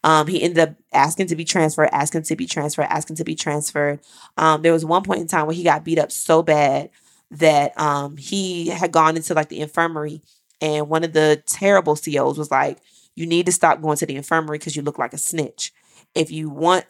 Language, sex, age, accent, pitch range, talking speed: English, female, 20-39, American, 150-170 Hz, 225 wpm